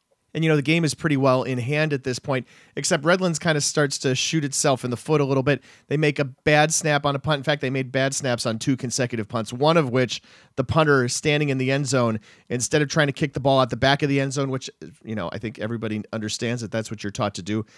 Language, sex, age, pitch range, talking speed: English, male, 40-59, 120-155 Hz, 280 wpm